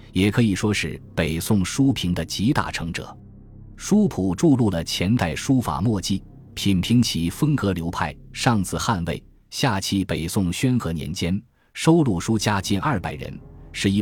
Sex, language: male, Chinese